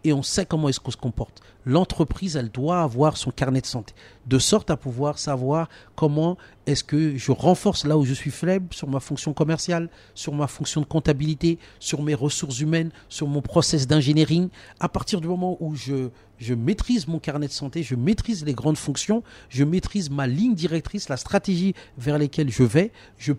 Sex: male